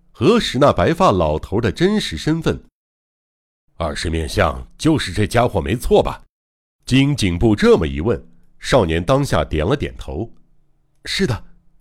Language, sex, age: Chinese, male, 60-79